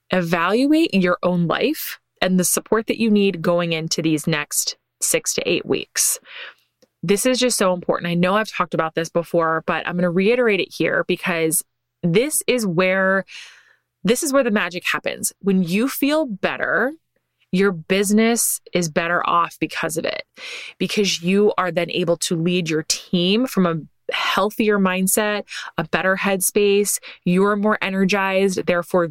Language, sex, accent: English, female, American